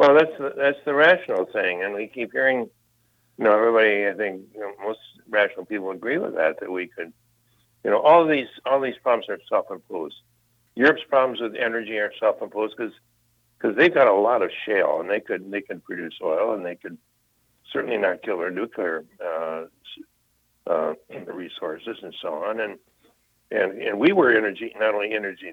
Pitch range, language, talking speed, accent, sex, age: 105-120 Hz, English, 190 wpm, American, male, 60-79